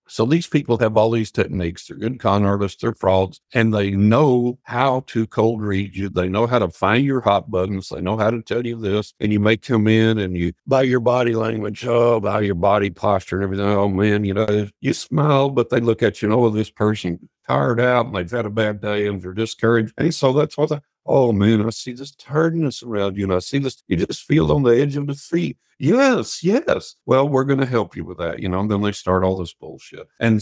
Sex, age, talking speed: male, 60-79, 250 wpm